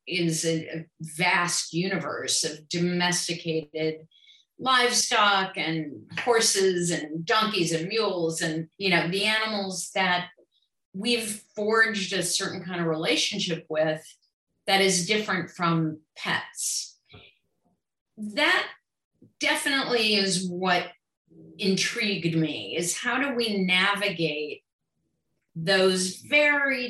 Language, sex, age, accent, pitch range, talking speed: English, female, 40-59, American, 165-210 Hz, 100 wpm